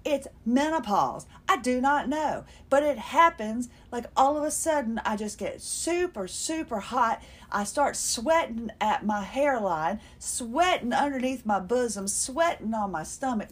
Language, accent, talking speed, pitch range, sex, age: English, American, 150 wpm, 225-330 Hz, female, 40-59